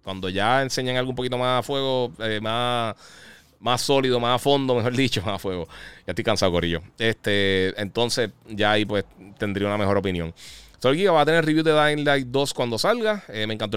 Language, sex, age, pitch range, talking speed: Spanish, male, 30-49, 95-125 Hz, 210 wpm